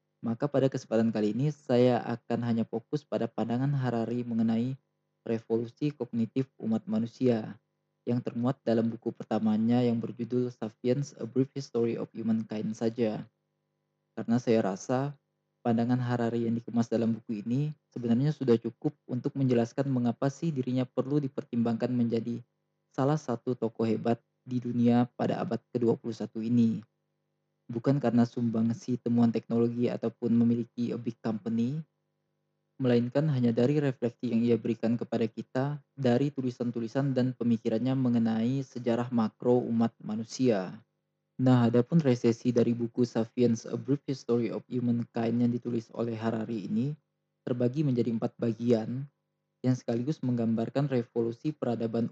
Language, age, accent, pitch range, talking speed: Indonesian, 20-39, native, 115-130 Hz, 130 wpm